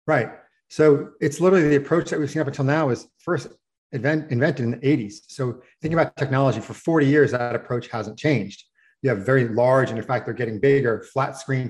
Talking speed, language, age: 215 wpm, English, 40-59